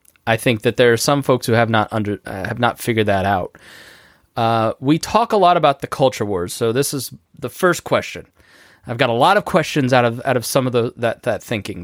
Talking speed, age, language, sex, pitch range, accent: 245 wpm, 20-39, English, male, 115-145 Hz, American